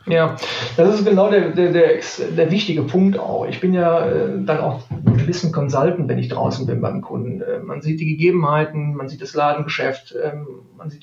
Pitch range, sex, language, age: 150-170 Hz, male, German, 40-59